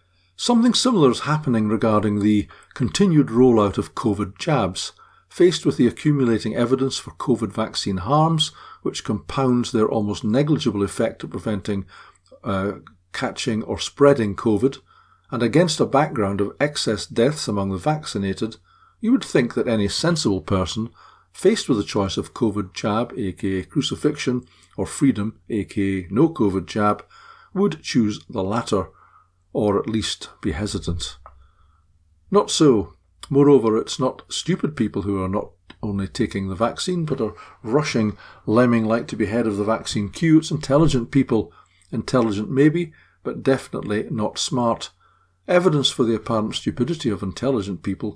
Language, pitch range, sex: English, 100-135 Hz, male